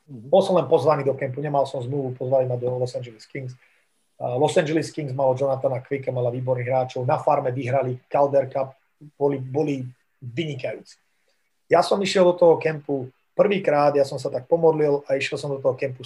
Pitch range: 130-155 Hz